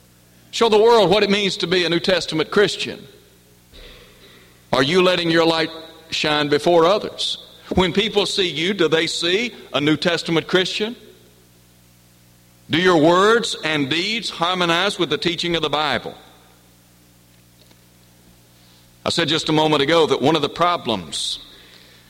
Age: 60-79